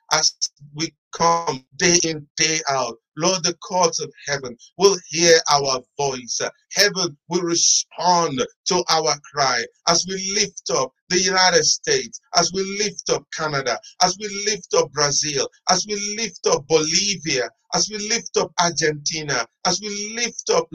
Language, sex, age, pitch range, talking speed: English, male, 50-69, 150-205 Hz, 155 wpm